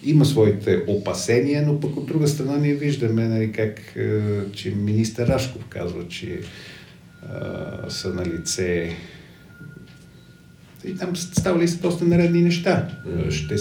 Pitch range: 95-145 Hz